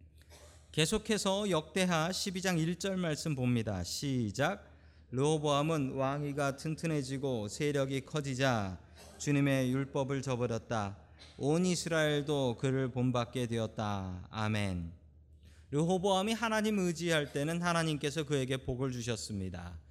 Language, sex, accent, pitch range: Korean, male, native, 100-160 Hz